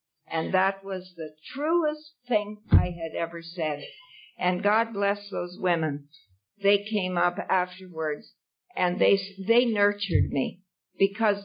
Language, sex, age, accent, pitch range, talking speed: English, female, 60-79, American, 175-225 Hz, 130 wpm